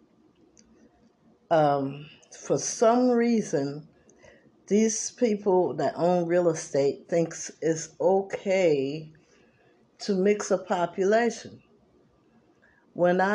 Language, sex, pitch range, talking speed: English, female, 145-185 Hz, 80 wpm